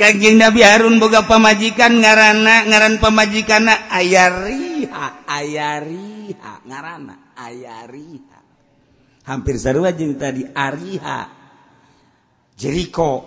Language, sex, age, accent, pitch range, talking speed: Indonesian, male, 50-69, native, 170-225 Hz, 85 wpm